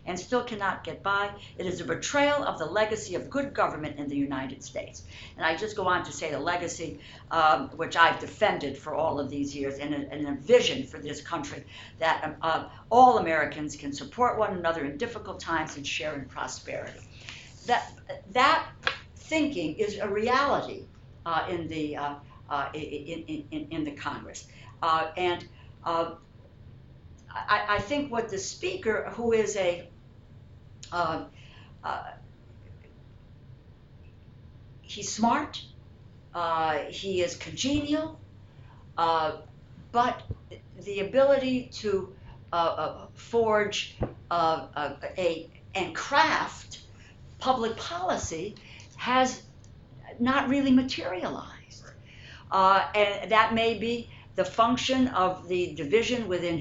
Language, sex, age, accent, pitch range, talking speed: English, female, 60-79, American, 145-220 Hz, 135 wpm